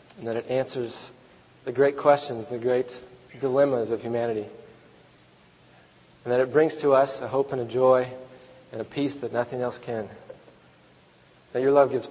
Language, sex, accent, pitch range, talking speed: English, male, American, 115-150 Hz, 170 wpm